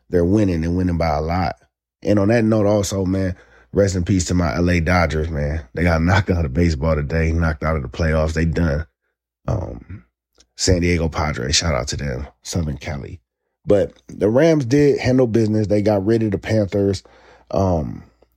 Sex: male